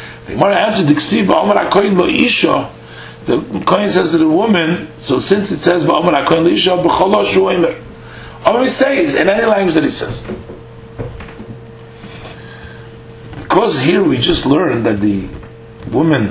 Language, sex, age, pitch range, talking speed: English, male, 50-69, 110-135 Hz, 100 wpm